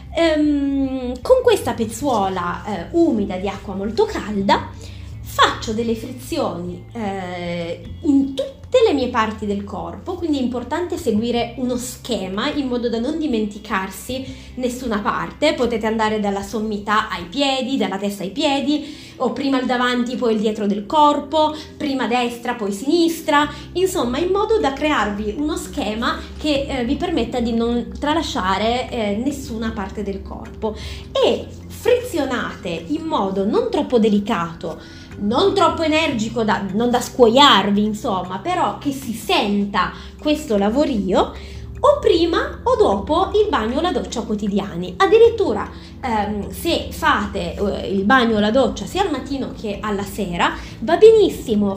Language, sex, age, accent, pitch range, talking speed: Italian, female, 20-39, native, 210-300 Hz, 140 wpm